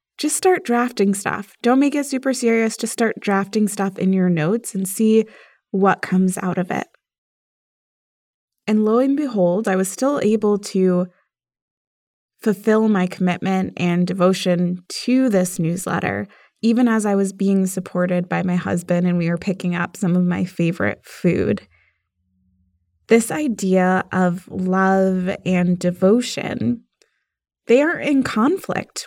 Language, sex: English, female